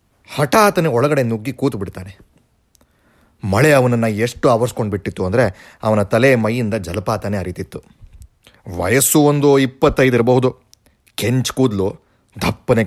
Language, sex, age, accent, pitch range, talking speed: Kannada, male, 30-49, native, 100-135 Hz, 105 wpm